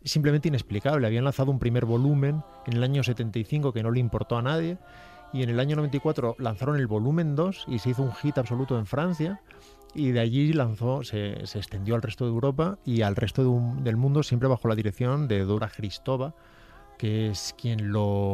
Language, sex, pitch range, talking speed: Spanish, male, 110-135 Hz, 205 wpm